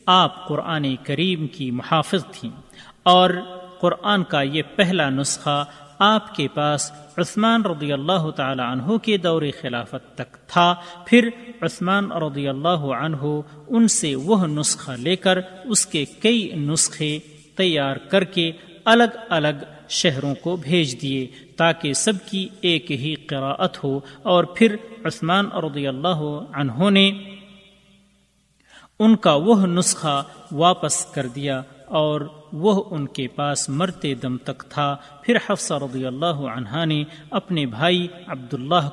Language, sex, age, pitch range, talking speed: Urdu, male, 40-59, 140-185 Hz, 135 wpm